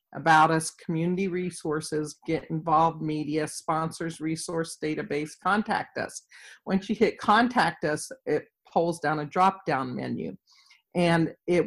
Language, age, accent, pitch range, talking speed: English, 50-69, American, 160-190 Hz, 135 wpm